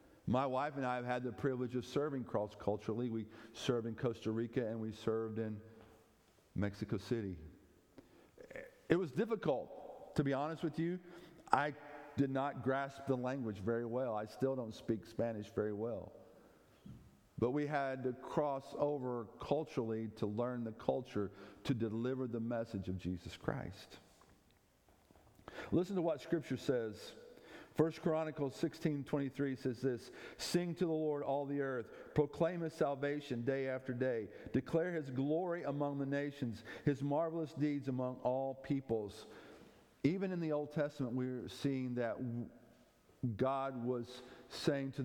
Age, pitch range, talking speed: 50-69, 115-145 Hz, 150 wpm